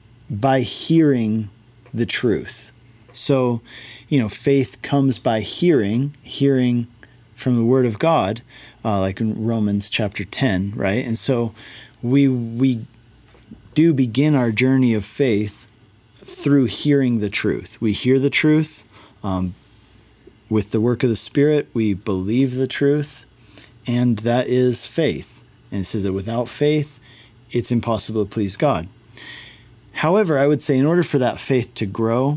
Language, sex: English, male